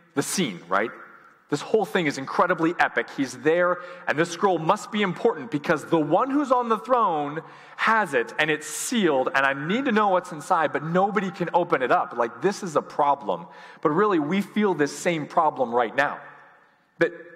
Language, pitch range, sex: English, 145-190 Hz, male